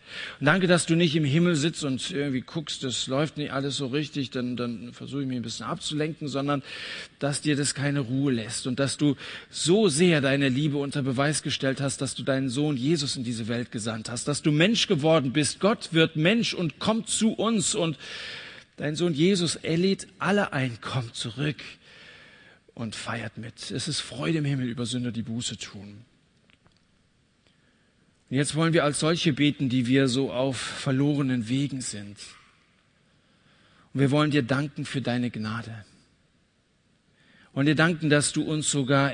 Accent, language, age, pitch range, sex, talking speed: German, German, 50-69, 120-150 Hz, male, 175 wpm